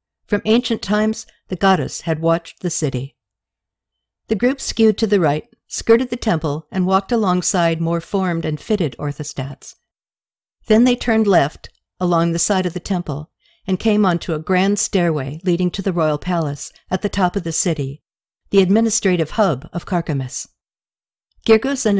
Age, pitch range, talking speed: 60-79, 155-205 Hz, 165 wpm